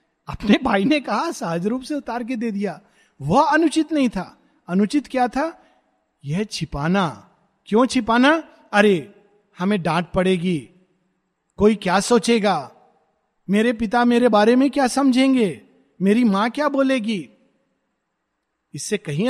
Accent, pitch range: native, 180-240 Hz